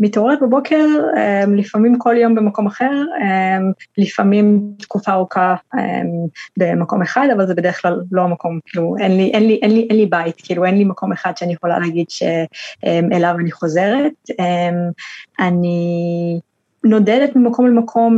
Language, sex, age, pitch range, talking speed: Hebrew, female, 20-39, 175-220 Hz, 130 wpm